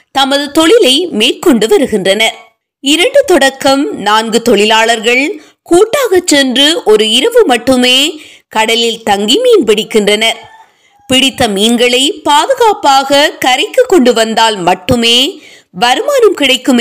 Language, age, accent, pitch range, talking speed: Tamil, 20-39, native, 230-335 Hz, 90 wpm